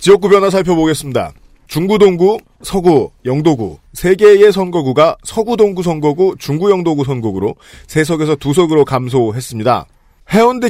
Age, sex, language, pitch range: 40-59, male, Korean, 145-195 Hz